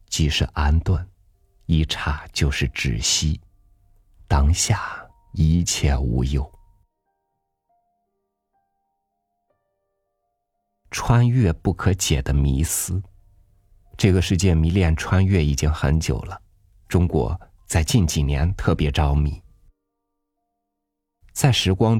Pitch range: 80-100 Hz